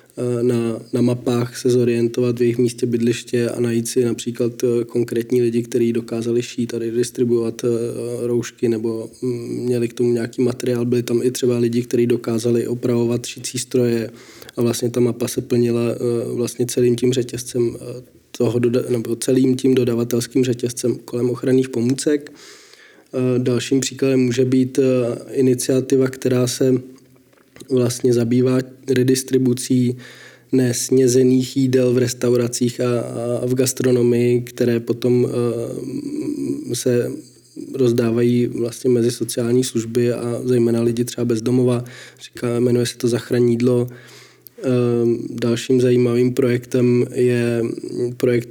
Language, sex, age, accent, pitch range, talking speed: Czech, male, 20-39, native, 120-125 Hz, 120 wpm